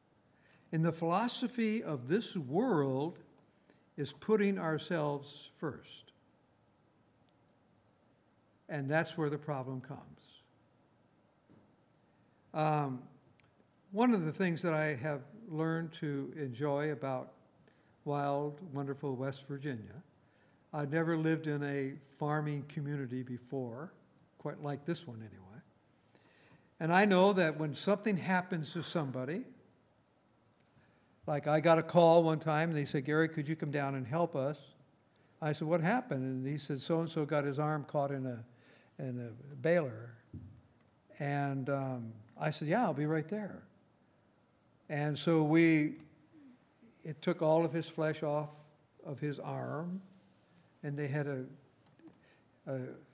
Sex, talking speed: male, 135 wpm